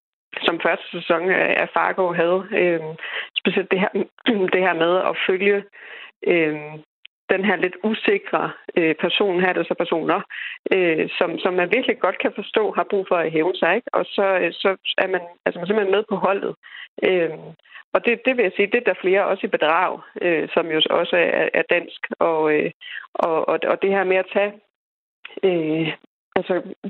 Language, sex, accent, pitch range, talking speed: Danish, female, native, 160-195 Hz, 185 wpm